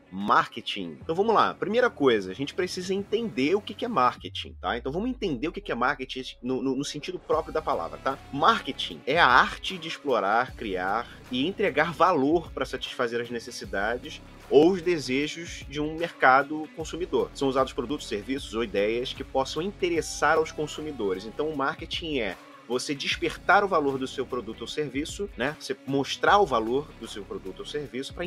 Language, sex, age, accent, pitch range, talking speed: Portuguese, male, 30-49, Brazilian, 125-175 Hz, 180 wpm